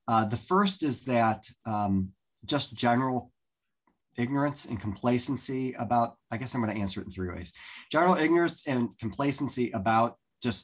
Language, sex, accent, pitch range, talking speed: English, male, American, 100-115 Hz, 160 wpm